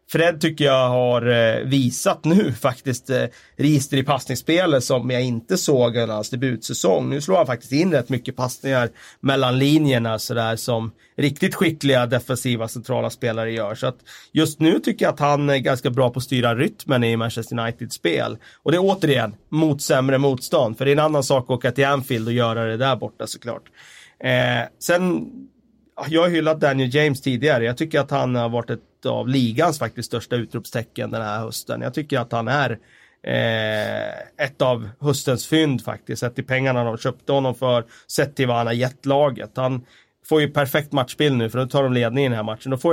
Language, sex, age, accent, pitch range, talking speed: Swedish, male, 30-49, native, 120-145 Hz, 200 wpm